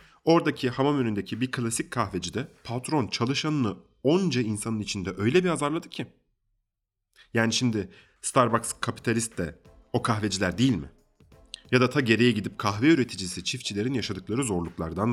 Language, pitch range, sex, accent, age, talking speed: Turkish, 90-125 Hz, male, native, 30-49, 135 wpm